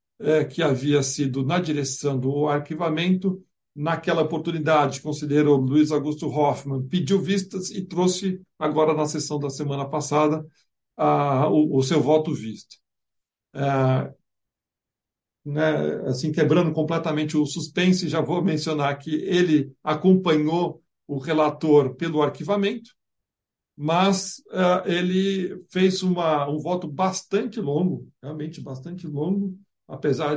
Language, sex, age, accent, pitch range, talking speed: Portuguese, male, 60-79, Brazilian, 140-165 Hz, 120 wpm